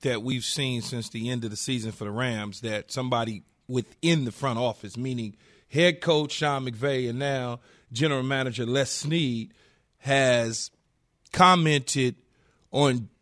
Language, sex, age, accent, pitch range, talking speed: English, male, 40-59, American, 135-185 Hz, 145 wpm